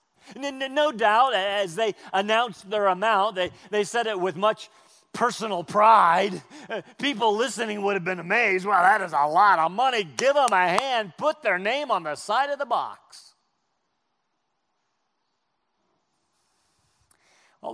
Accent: American